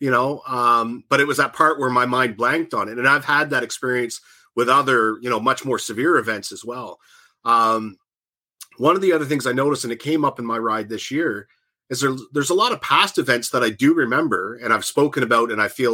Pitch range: 110-130 Hz